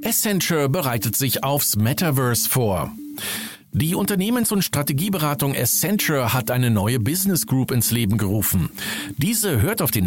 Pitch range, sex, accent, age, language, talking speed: 110-170 Hz, male, German, 50-69, German, 135 wpm